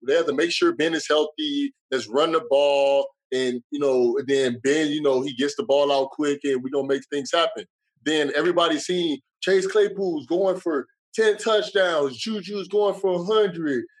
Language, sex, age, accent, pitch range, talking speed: English, male, 20-39, American, 150-220 Hz, 195 wpm